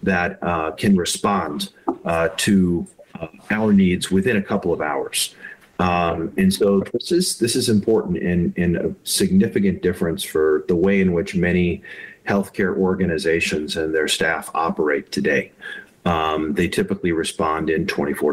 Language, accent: English, American